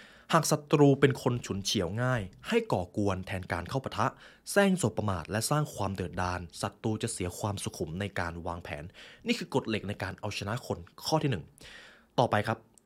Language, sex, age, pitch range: Thai, male, 20-39, 95-140 Hz